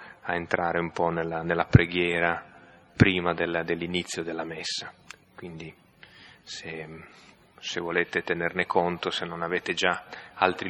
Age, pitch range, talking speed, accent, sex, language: 30-49, 90-100 Hz, 120 wpm, native, male, Italian